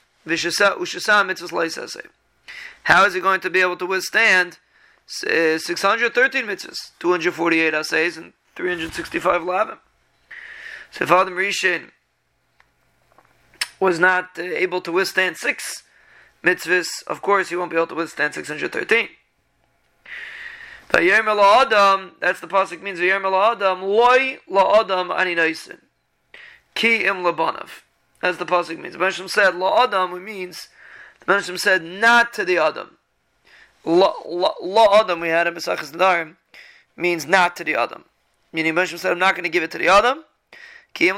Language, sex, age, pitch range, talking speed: English, male, 30-49, 175-205 Hz, 130 wpm